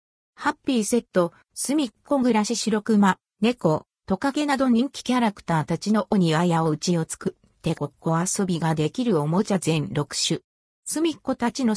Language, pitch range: Japanese, 180-245 Hz